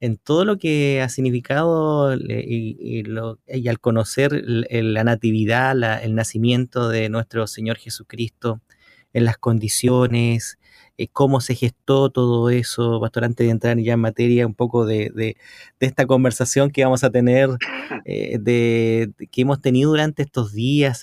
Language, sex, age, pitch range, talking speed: Spanish, male, 30-49, 115-135 Hz, 145 wpm